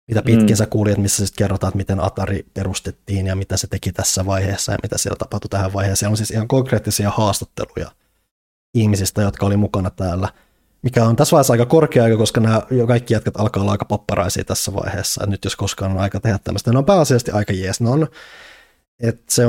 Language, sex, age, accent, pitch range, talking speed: Finnish, male, 20-39, native, 95-110 Hz, 195 wpm